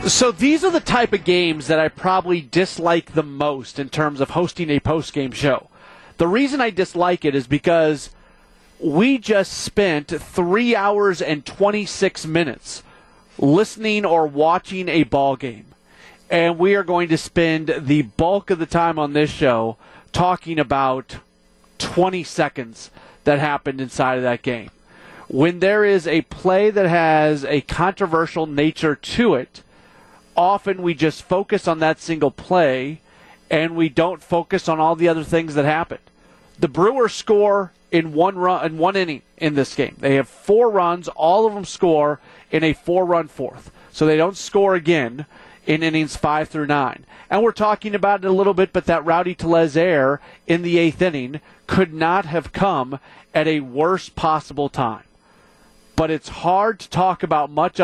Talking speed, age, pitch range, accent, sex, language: 170 wpm, 30-49, 150-185 Hz, American, male, English